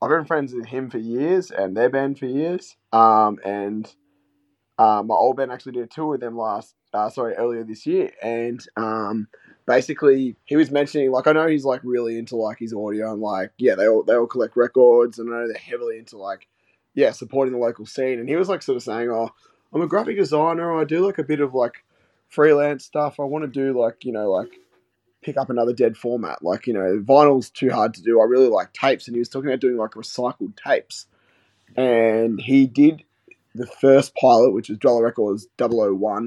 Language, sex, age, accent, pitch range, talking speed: English, male, 20-39, Australian, 115-135 Hz, 220 wpm